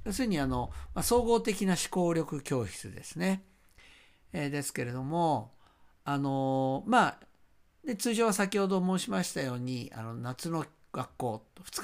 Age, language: 50-69, Japanese